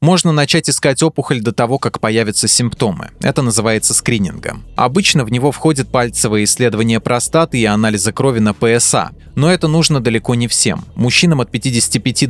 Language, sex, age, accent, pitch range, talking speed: Russian, male, 20-39, native, 110-140 Hz, 160 wpm